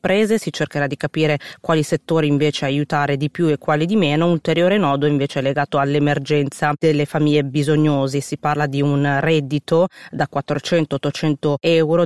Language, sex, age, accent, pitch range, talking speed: Italian, female, 30-49, native, 145-165 Hz, 165 wpm